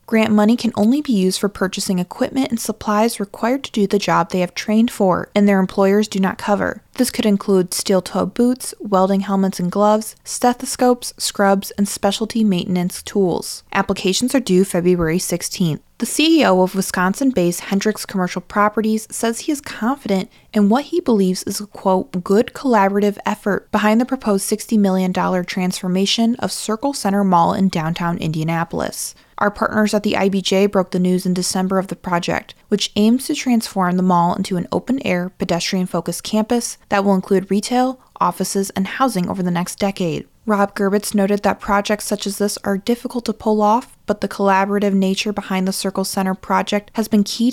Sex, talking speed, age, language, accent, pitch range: female, 175 wpm, 20-39, English, American, 185-220 Hz